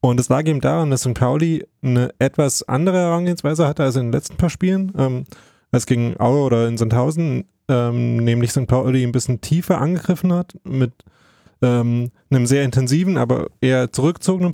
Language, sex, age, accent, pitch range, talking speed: German, male, 30-49, German, 120-145 Hz, 180 wpm